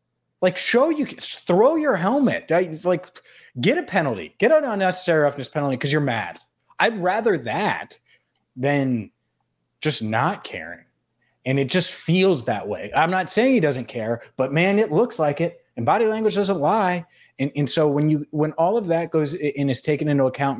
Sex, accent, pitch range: male, American, 120-160 Hz